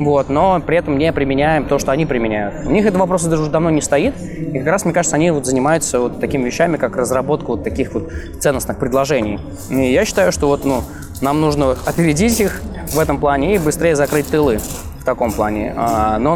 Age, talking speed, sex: 20-39, 215 wpm, male